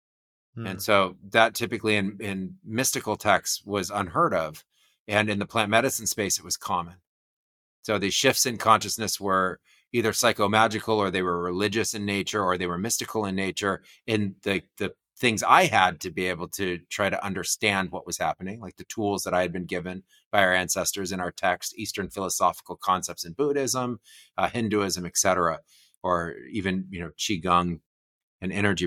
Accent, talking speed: American, 180 wpm